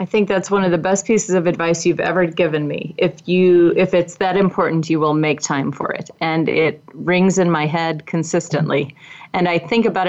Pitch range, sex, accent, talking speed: 160-185 Hz, female, American, 220 wpm